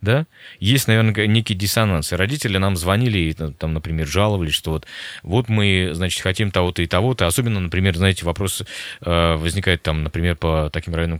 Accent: native